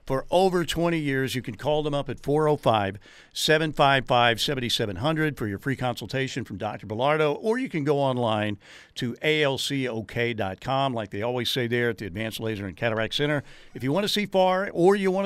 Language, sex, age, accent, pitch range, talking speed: English, male, 50-69, American, 120-165 Hz, 180 wpm